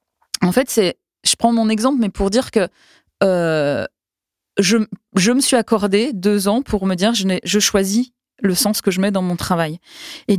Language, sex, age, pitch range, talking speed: French, female, 20-39, 185-250 Hz, 200 wpm